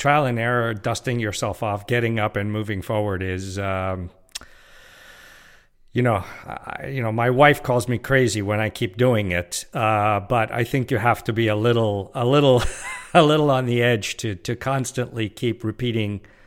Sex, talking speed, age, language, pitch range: male, 170 wpm, 50-69, English, 105-130 Hz